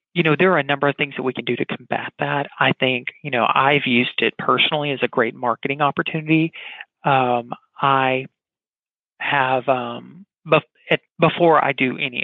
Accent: American